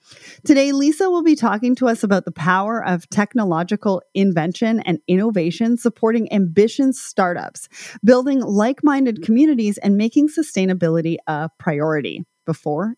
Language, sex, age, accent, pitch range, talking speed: English, female, 30-49, American, 185-270 Hz, 125 wpm